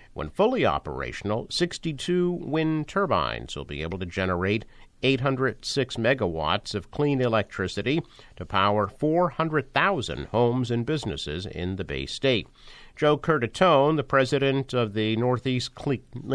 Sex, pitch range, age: male, 105-140 Hz, 50-69